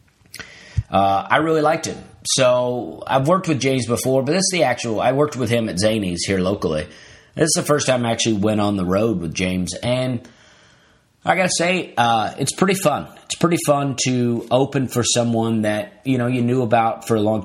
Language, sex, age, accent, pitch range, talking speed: English, male, 30-49, American, 105-130 Hz, 210 wpm